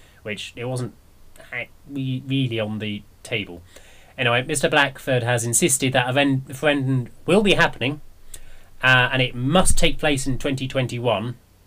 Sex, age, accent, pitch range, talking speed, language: male, 20-39, British, 95-130 Hz, 140 wpm, English